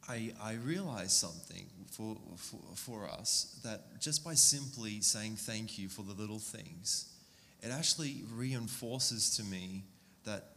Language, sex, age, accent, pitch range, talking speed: English, male, 20-39, Australian, 105-130 Hz, 140 wpm